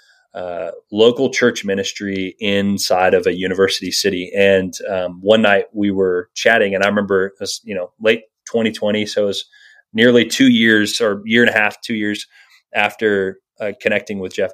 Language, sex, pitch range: English, male, 100-145 Hz